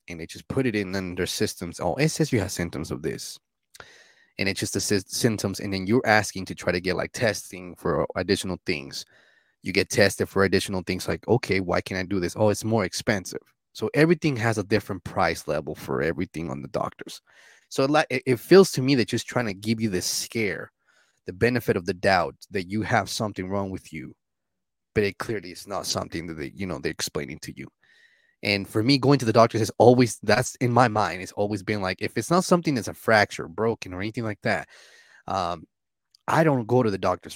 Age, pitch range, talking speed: 20-39, 95-125 Hz, 225 wpm